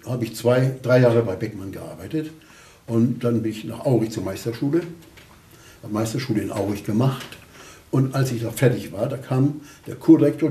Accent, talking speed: German, 175 wpm